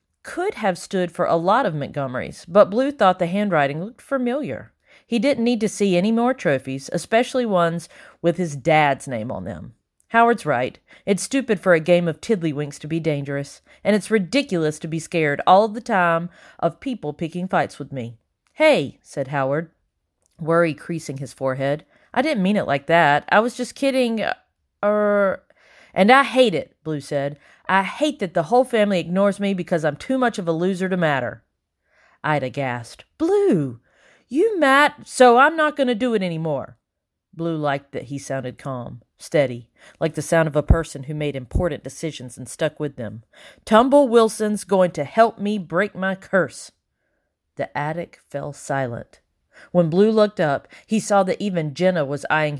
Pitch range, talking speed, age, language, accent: 145-210 Hz, 180 wpm, 40-59, English, American